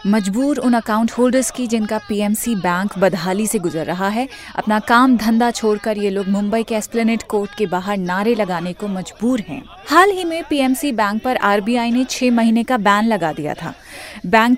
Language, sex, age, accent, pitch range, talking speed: Hindi, female, 30-49, native, 205-260 Hz, 190 wpm